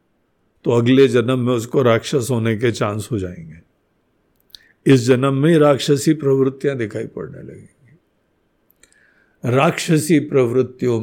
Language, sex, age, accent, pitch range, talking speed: Hindi, male, 60-79, native, 130-200 Hz, 120 wpm